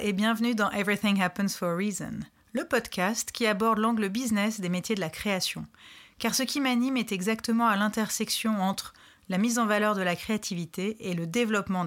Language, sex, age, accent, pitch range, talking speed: French, female, 30-49, French, 180-230 Hz, 190 wpm